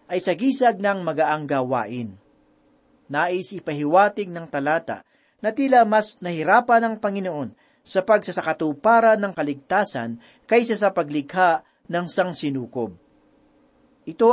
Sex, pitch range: male, 165-225 Hz